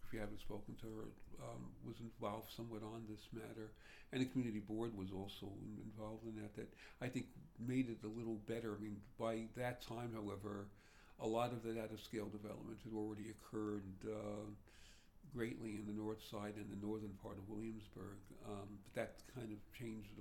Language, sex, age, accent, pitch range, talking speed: English, male, 60-79, American, 105-115 Hz, 180 wpm